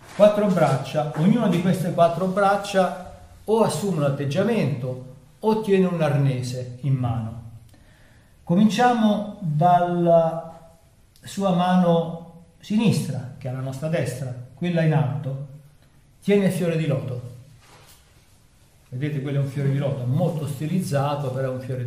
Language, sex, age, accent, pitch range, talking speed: Italian, male, 40-59, native, 140-175 Hz, 130 wpm